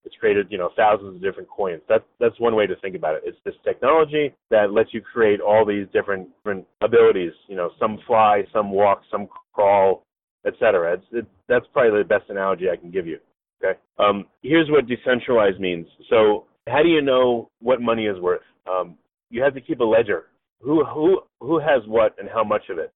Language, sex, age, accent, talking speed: English, male, 30-49, American, 210 wpm